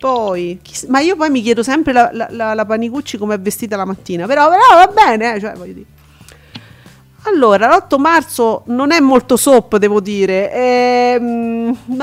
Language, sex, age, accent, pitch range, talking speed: Italian, female, 40-59, native, 195-265 Hz, 175 wpm